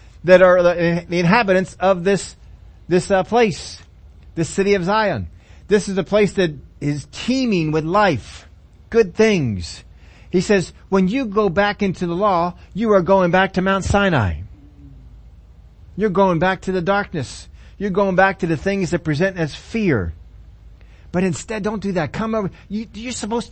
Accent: American